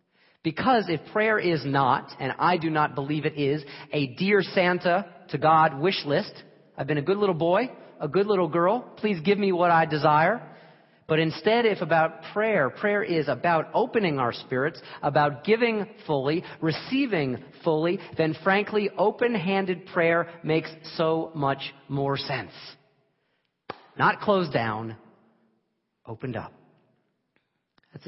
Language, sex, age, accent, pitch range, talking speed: English, male, 40-59, American, 120-175 Hz, 140 wpm